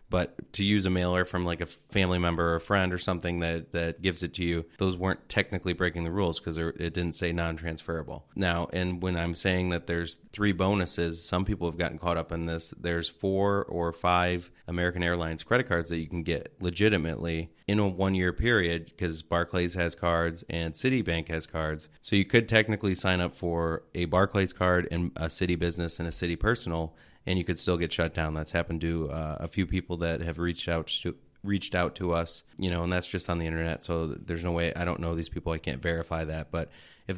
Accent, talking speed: American, 225 wpm